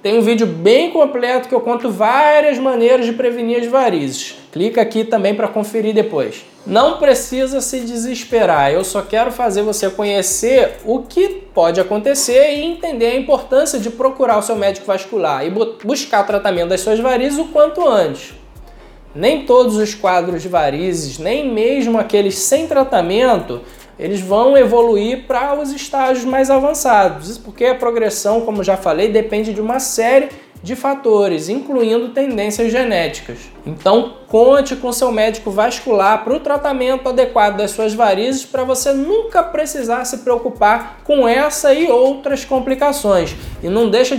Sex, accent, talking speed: male, Brazilian, 155 wpm